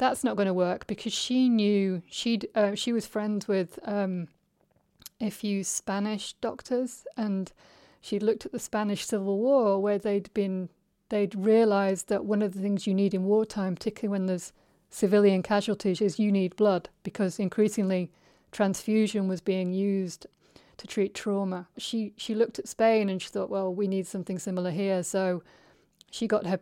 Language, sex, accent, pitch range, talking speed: English, female, British, 190-210 Hz, 175 wpm